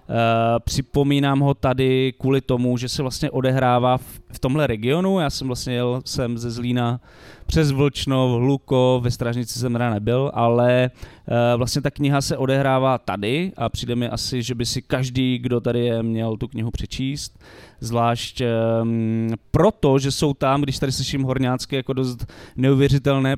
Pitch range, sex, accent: 115-135 Hz, male, native